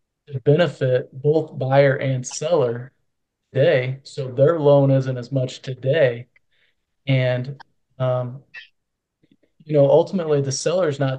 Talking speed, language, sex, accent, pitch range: 120 wpm, English, male, American, 125-145 Hz